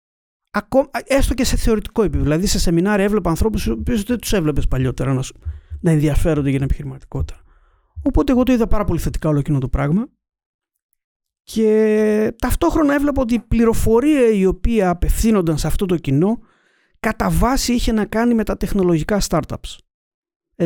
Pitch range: 145-210 Hz